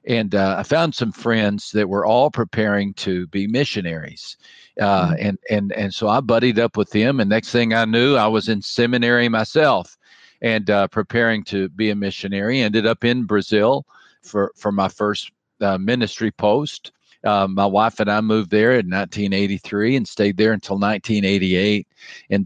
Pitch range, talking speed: 100-115 Hz, 175 wpm